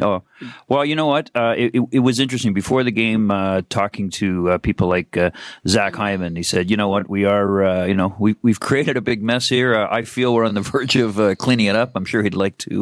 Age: 40-59